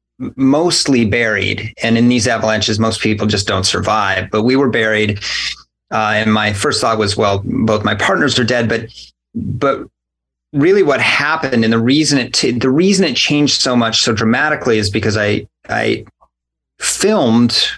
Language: English